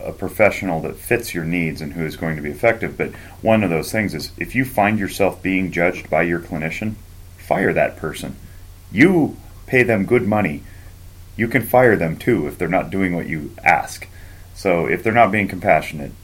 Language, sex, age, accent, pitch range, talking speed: English, male, 30-49, American, 80-95 Hz, 200 wpm